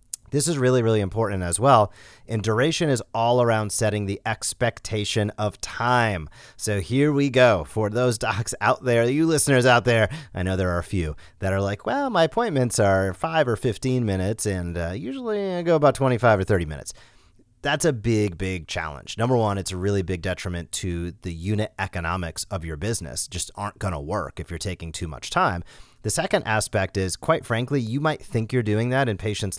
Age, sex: 30-49, male